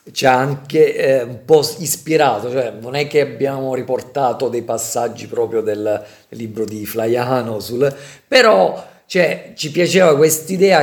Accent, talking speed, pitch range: native, 145 wpm, 120-150 Hz